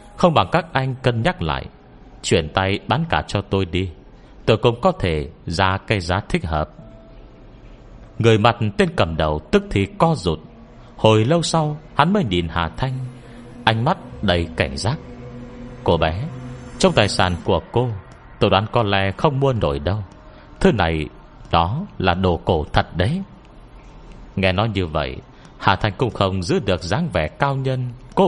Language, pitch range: Vietnamese, 90-125 Hz